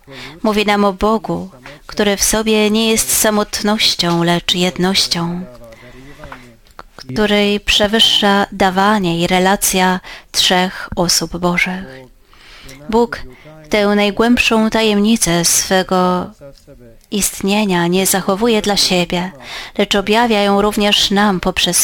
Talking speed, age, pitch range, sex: 100 wpm, 30-49, 170-205 Hz, female